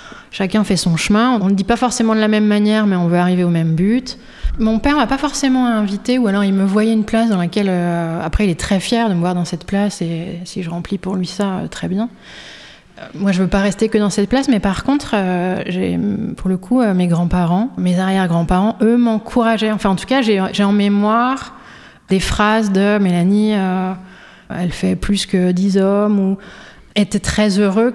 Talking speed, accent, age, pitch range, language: 230 wpm, French, 30-49, 185-225 Hz, French